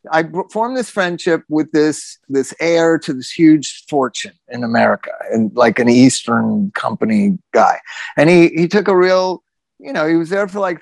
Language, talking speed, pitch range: English, 185 wpm, 120-160 Hz